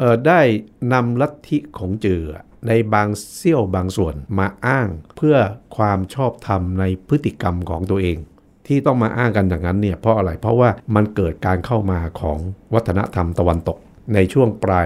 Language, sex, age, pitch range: Thai, male, 60-79, 95-125 Hz